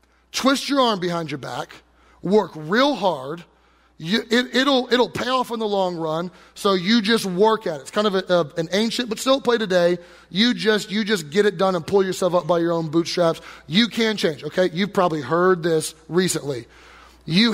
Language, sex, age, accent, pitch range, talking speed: English, male, 30-49, American, 150-205 Hz, 210 wpm